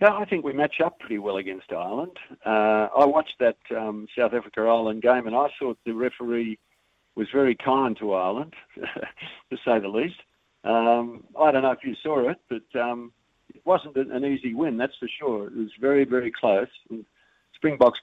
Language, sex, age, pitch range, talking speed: English, male, 50-69, 105-135 Hz, 190 wpm